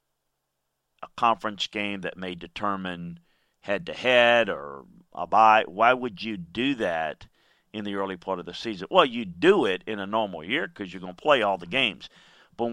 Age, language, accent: 50-69, English, American